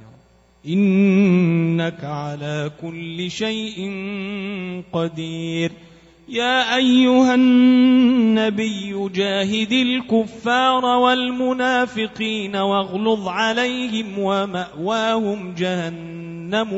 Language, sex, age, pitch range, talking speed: Arabic, male, 30-49, 195-250 Hz, 55 wpm